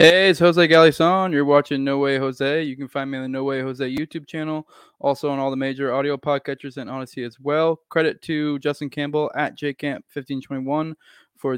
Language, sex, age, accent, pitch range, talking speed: English, male, 20-39, American, 130-150 Hz, 195 wpm